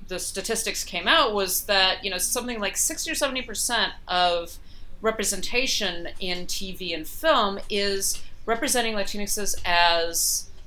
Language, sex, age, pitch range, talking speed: English, female, 30-49, 185-245 Hz, 135 wpm